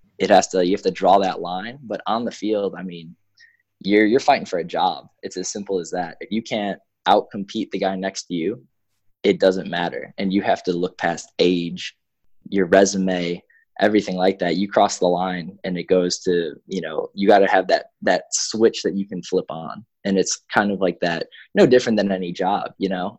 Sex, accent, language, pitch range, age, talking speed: male, American, English, 90-105 Hz, 20-39, 215 wpm